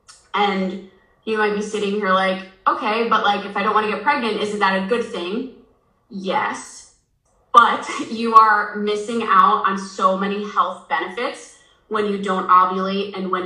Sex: female